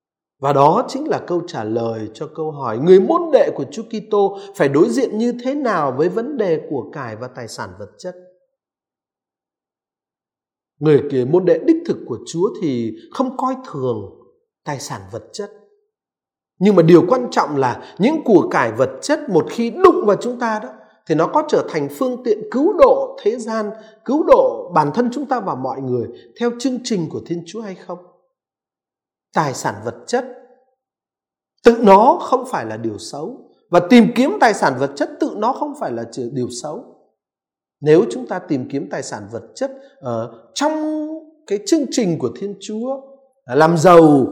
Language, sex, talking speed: Vietnamese, male, 190 wpm